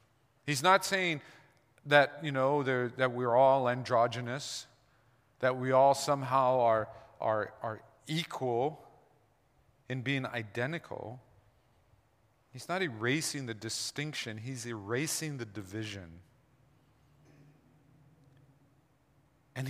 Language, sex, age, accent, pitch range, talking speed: English, male, 40-59, American, 120-150 Hz, 95 wpm